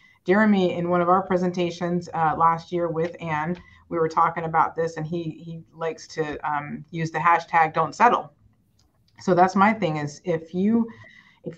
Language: English